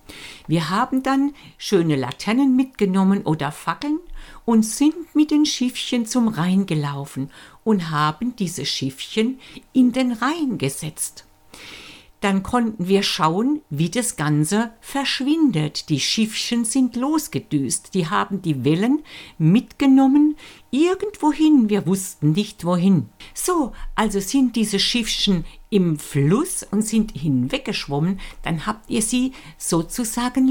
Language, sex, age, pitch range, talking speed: German, female, 50-69, 170-255 Hz, 120 wpm